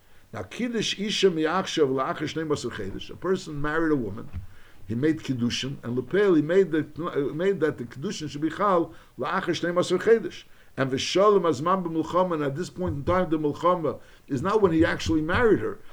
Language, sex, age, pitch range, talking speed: English, male, 60-79, 130-180 Hz, 165 wpm